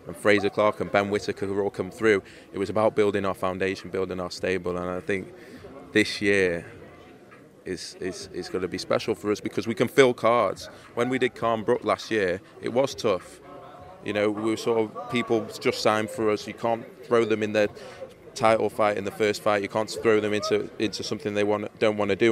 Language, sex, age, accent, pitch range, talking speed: English, male, 20-39, British, 95-105 Hz, 225 wpm